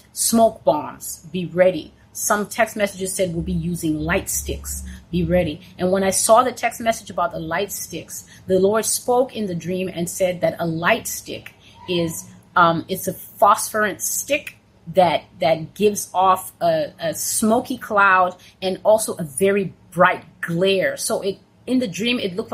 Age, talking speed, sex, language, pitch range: 30-49, 175 wpm, female, English, 175-225 Hz